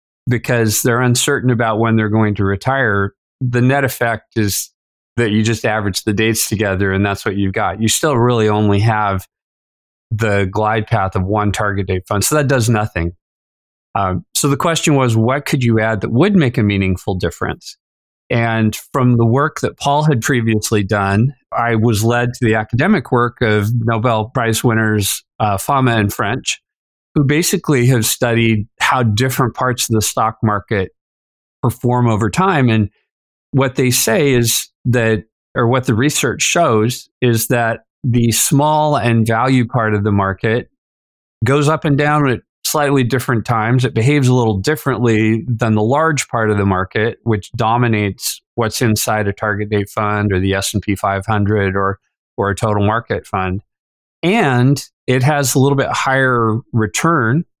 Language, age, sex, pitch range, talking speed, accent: English, 40-59, male, 105-125 Hz, 170 wpm, American